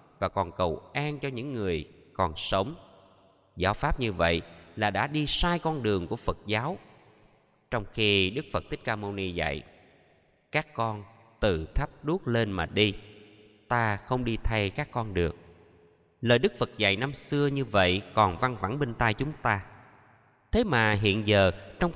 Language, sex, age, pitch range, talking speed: Vietnamese, male, 20-39, 95-130 Hz, 180 wpm